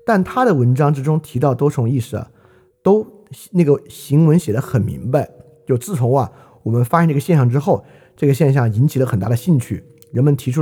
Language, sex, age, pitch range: Chinese, male, 50-69, 115-160 Hz